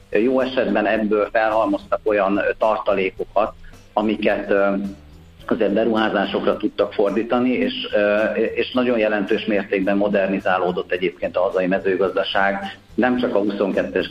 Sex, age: male, 50-69